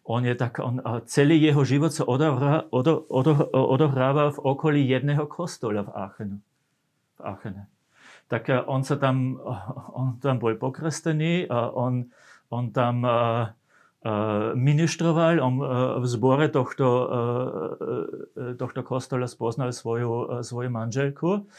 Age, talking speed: 40-59, 145 wpm